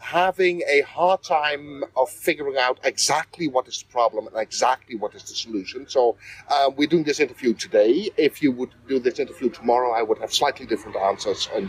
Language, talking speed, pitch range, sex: German, 200 wpm, 135-205 Hz, male